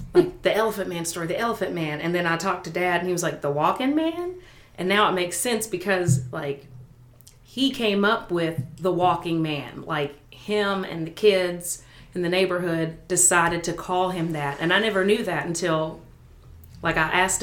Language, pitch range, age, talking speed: English, 155-190 Hz, 30-49, 195 wpm